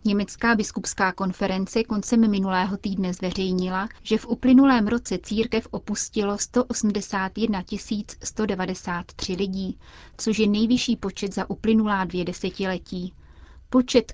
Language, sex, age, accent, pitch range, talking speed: Czech, female, 30-49, native, 185-215 Hz, 105 wpm